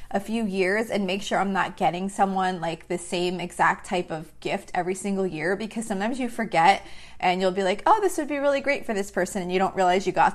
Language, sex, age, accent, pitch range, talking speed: English, female, 20-39, American, 175-210 Hz, 250 wpm